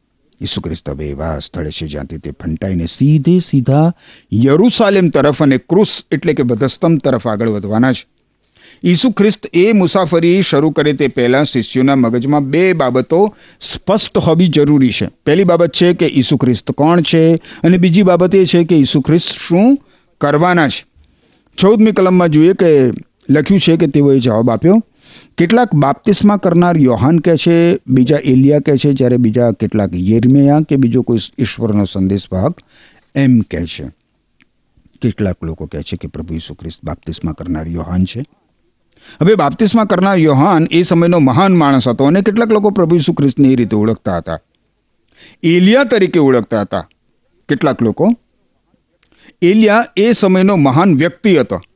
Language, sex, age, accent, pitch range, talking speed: Gujarati, male, 50-69, native, 115-175 Hz, 85 wpm